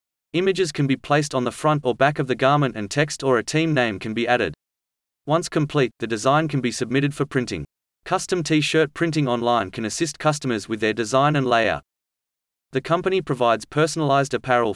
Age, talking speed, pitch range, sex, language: 30-49, 190 wpm, 115-150 Hz, male, English